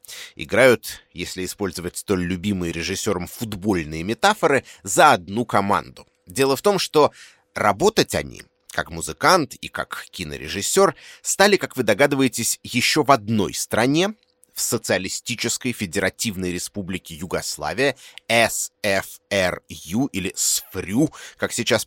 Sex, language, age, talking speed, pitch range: male, Russian, 30-49, 110 wpm, 100-130 Hz